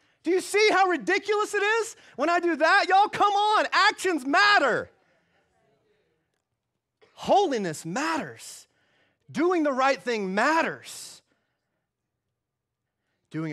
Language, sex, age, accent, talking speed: English, male, 30-49, American, 105 wpm